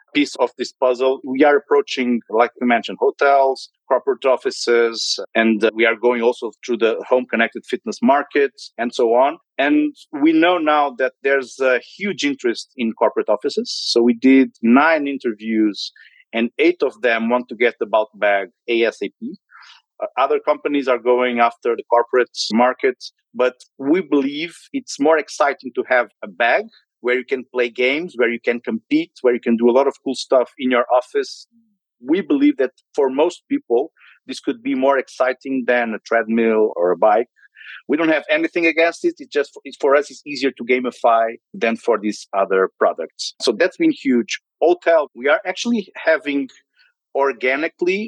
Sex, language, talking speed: male, English, 175 wpm